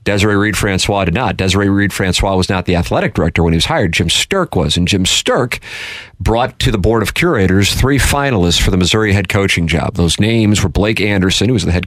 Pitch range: 85-100 Hz